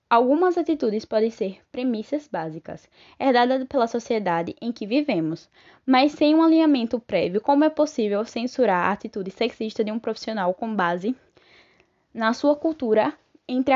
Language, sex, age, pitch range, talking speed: Portuguese, female, 10-29, 200-280 Hz, 145 wpm